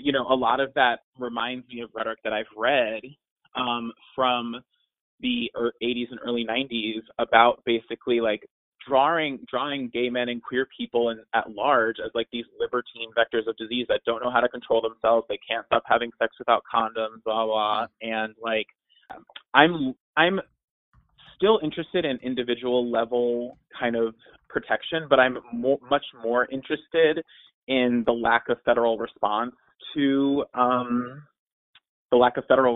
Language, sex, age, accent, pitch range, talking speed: English, male, 20-39, American, 115-135 Hz, 160 wpm